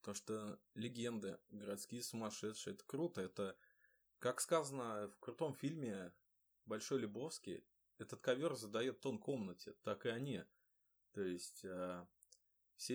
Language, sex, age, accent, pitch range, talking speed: Ukrainian, male, 20-39, native, 100-135 Hz, 120 wpm